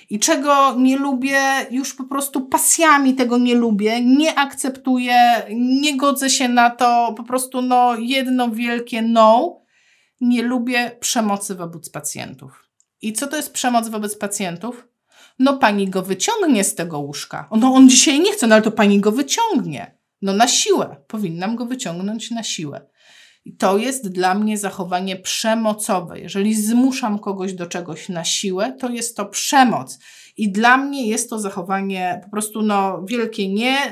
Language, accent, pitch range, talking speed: Polish, native, 185-245 Hz, 160 wpm